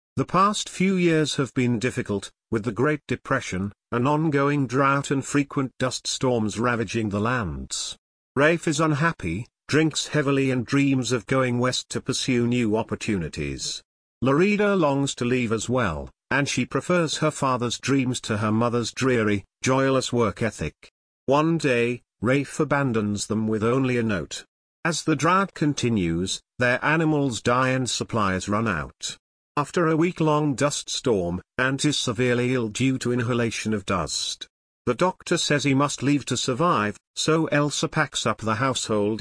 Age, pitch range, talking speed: 50-69, 110-145 Hz, 155 wpm